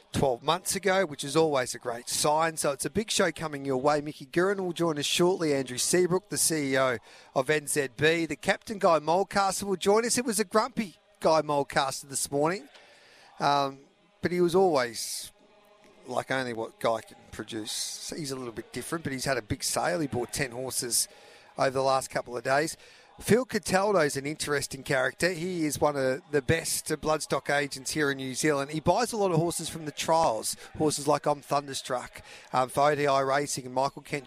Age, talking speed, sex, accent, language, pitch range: 40-59, 200 wpm, male, Australian, English, 135-170 Hz